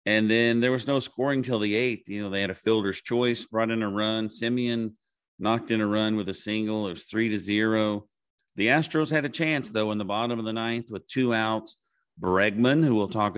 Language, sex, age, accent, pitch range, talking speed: English, male, 40-59, American, 100-125 Hz, 235 wpm